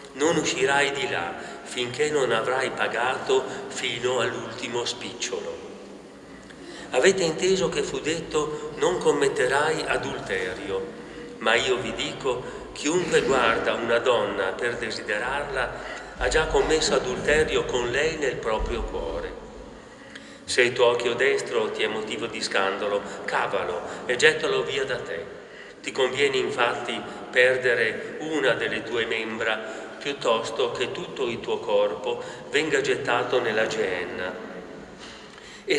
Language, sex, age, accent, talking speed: Italian, male, 40-59, native, 120 wpm